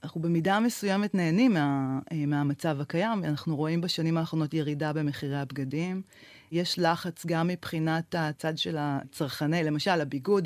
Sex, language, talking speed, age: female, Hebrew, 130 wpm, 30-49